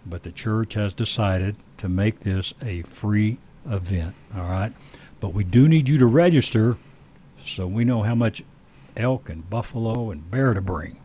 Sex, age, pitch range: male, 60-79, 95-125 Hz